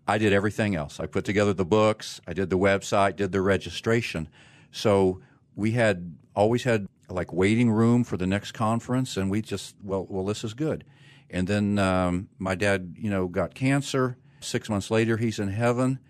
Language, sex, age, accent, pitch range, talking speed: English, male, 50-69, American, 95-110 Hz, 190 wpm